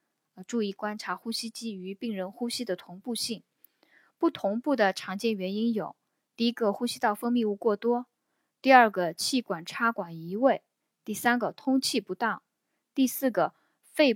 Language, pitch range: Chinese, 190-250 Hz